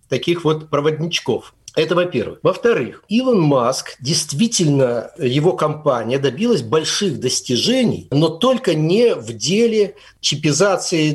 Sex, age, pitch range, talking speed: male, 60-79, 145-215 Hz, 110 wpm